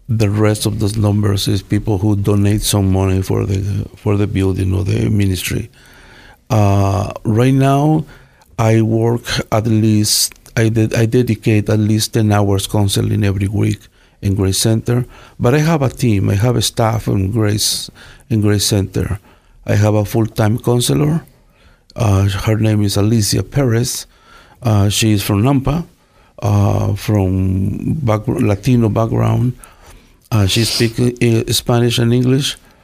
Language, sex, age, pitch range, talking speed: English, male, 50-69, 105-120 Hz, 150 wpm